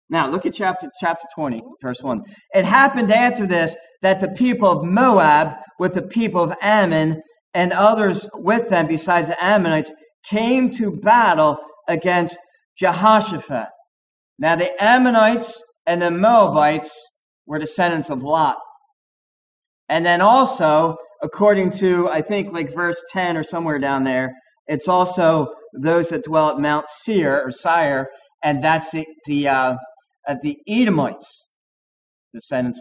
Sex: male